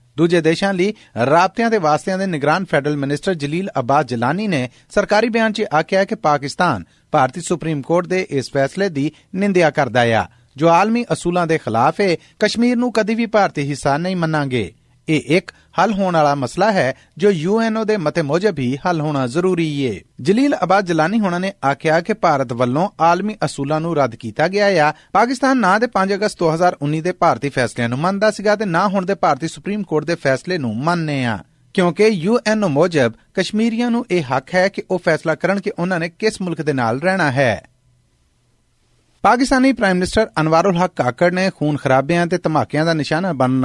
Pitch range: 140-190 Hz